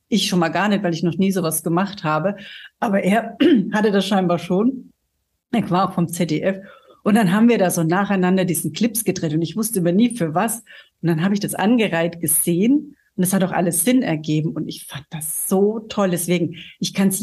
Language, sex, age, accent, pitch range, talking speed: German, female, 60-79, German, 170-220 Hz, 225 wpm